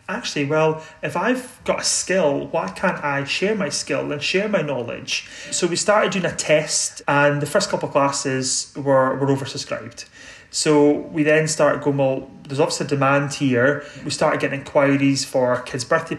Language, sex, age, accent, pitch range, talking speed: English, male, 30-49, British, 140-160 Hz, 180 wpm